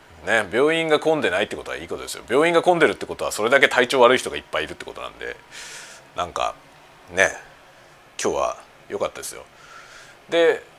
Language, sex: Japanese, male